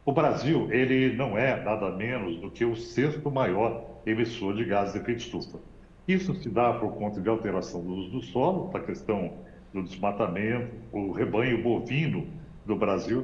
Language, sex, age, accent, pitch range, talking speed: English, male, 60-79, Brazilian, 110-145 Hz, 170 wpm